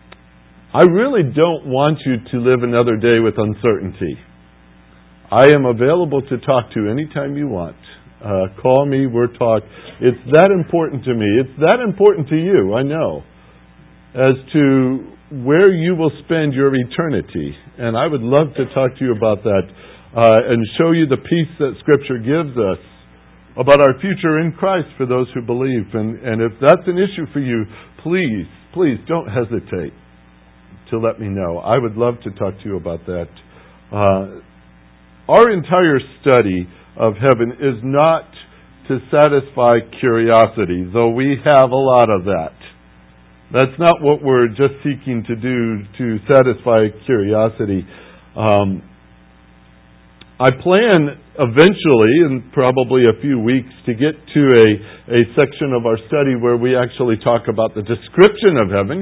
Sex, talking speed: male, 160 wpm